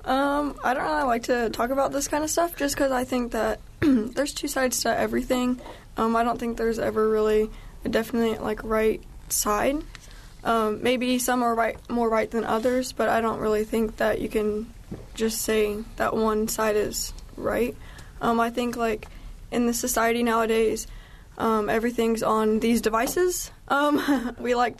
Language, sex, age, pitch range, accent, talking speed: English, female, 10-29, 215-245 Hz, American, 180 wpm